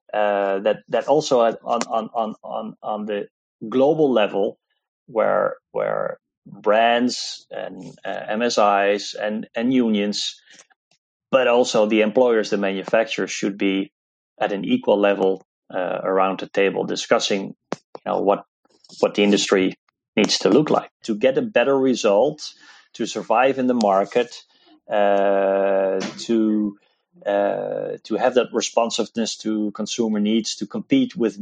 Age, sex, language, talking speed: 30-49, male, English, 135 wpm